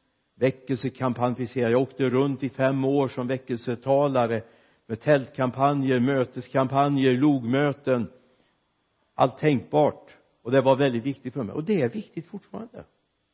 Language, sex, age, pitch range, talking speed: Swedish, male, 60-79, 125-165 Hz, 130 wpm